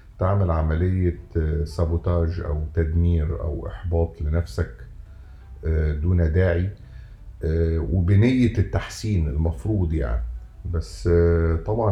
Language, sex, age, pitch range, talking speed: Arabic, male, 50-69, 80-90 Hz, 80 wpm